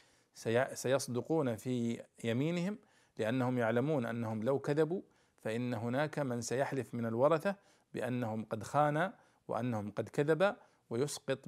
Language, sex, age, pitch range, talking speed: Arabic, male, 50-69, 115-140 Hz, 110 wpm